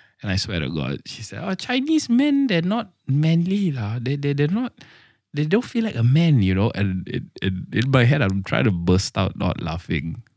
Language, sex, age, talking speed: English, male, 20-39, 195 wpm